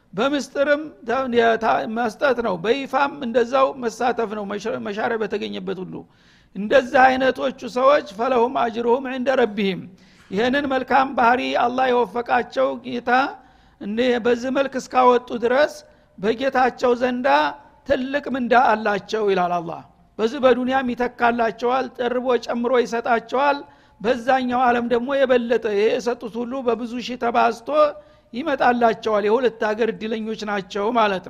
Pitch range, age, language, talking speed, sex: 220-260 Hz, 60-79, Amharic, 105 wpm, male